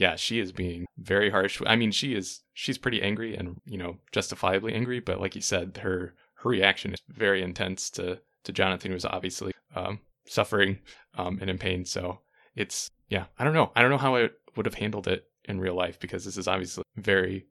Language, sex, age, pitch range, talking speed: English, male, 20-39, 95-110 Hz, 215 wpm